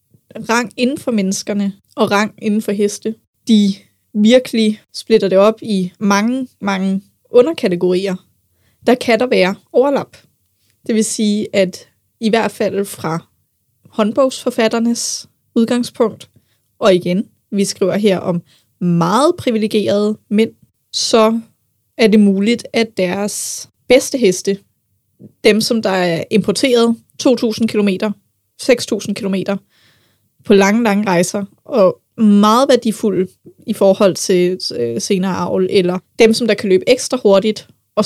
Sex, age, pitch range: female, 20-39, 185-225 Hz